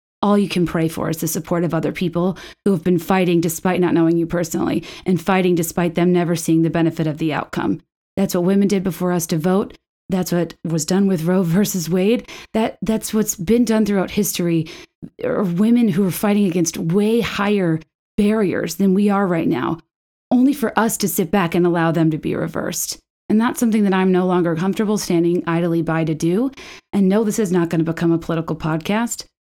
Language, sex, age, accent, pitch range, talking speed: English, female, 30-49, American, 170-205 Hz, 210 wpm